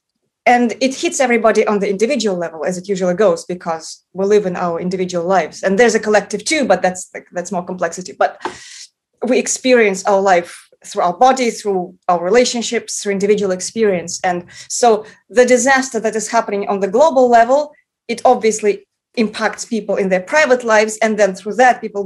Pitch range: 195-245 Hz